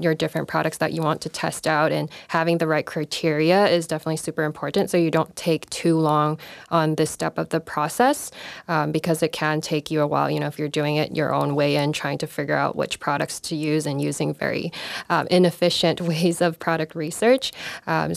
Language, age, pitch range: English, 10-29, 155-175 Hz